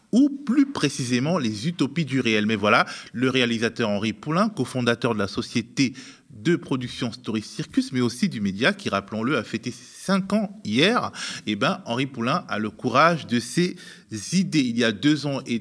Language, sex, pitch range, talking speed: French, male, 115-175 Hz, 180 wpm